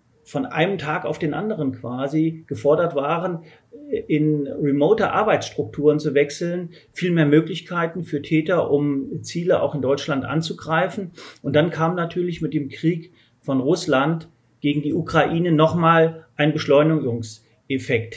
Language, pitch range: German, 140-170 Hz